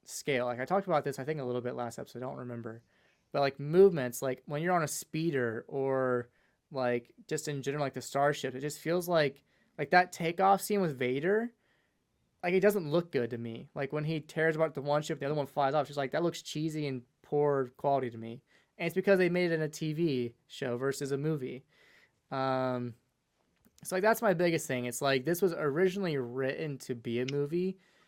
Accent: American